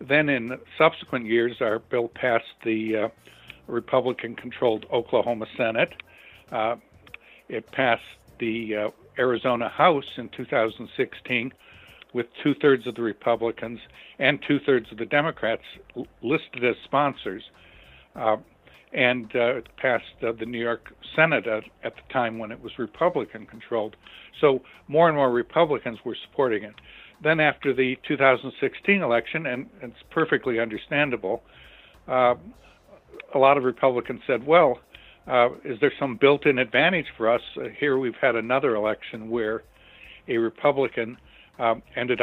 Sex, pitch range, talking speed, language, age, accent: male, 115-135 Hz, 130 wpm, English, 60-79, American